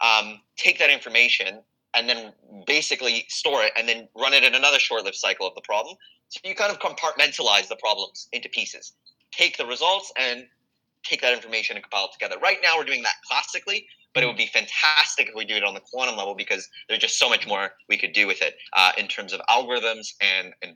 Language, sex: English, male